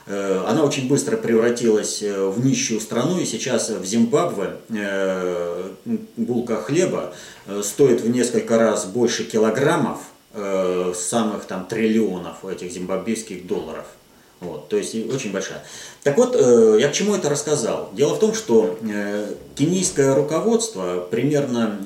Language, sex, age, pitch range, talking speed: Russian, male, 30-49, 100-140 Hz, 115 wpm